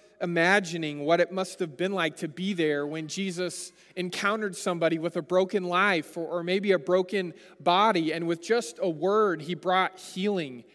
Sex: male